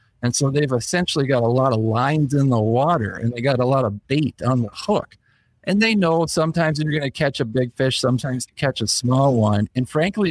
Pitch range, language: 115-145 Hz, English